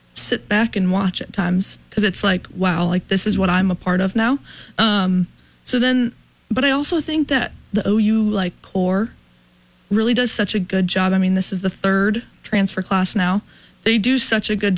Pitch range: 185-205 Hz